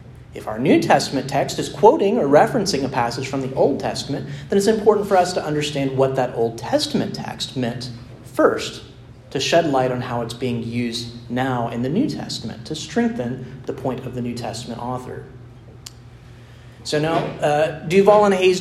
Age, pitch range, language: 30-49, 120-155 Hz, English